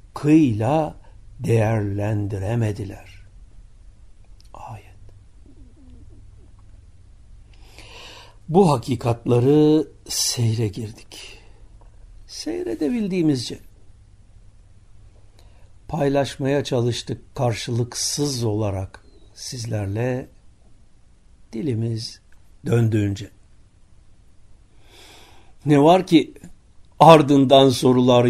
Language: Turkish